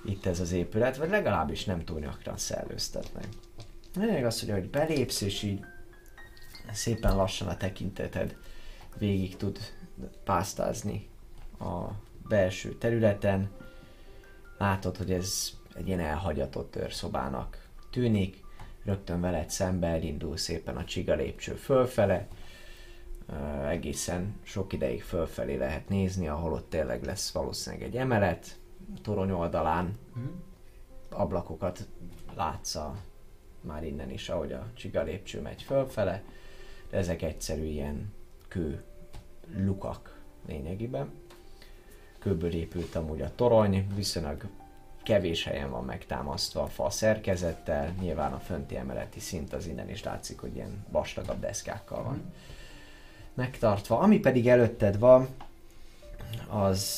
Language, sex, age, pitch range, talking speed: Hungarian, male, 30-49, 85-110 Hz, 115 wpm